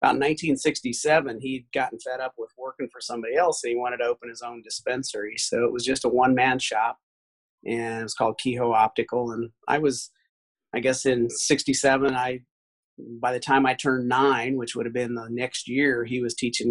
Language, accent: English, American